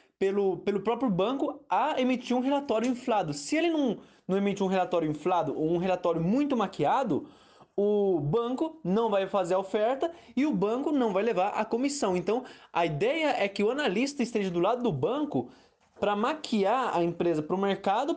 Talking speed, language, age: 180 wpm, Portuguese, 20-39